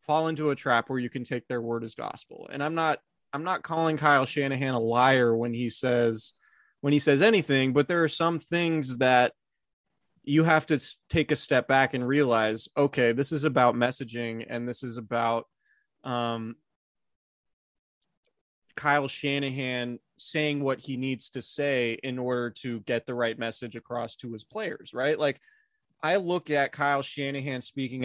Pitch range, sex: 120-145 Hz, male